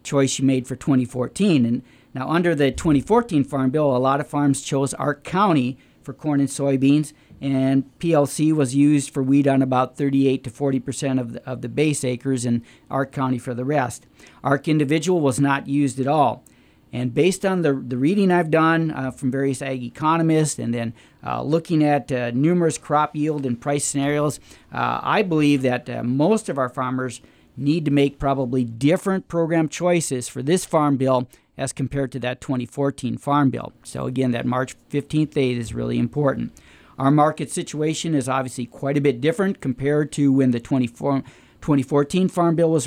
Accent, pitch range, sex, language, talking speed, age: American, 130-150 Hz, male, English, 185 wpm, 50-69